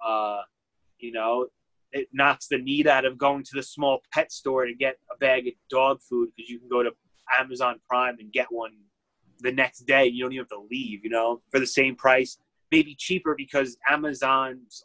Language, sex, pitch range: English, male, 120-155 Hz